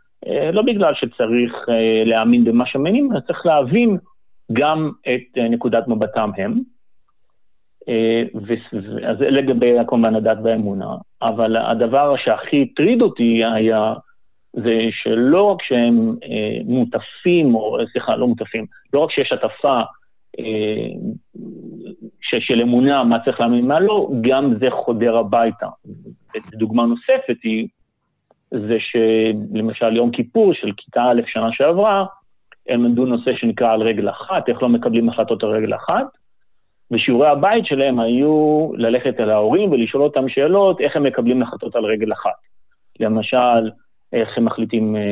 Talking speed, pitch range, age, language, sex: 140 wpm, 115-150 Hz, 50-69, Hebrew, male